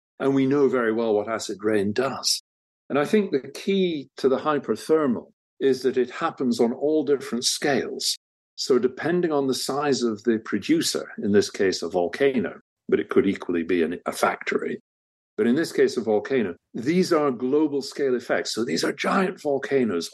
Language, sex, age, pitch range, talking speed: English, male, 50-69, 110-155 Hz, 180 wpm